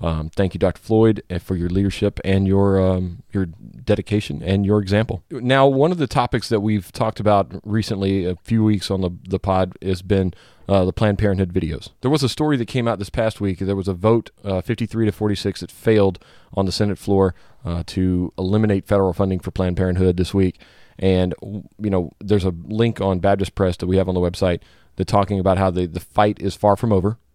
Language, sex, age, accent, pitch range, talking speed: English, male, 30-49, American, 90-105 Hz, 220 wpm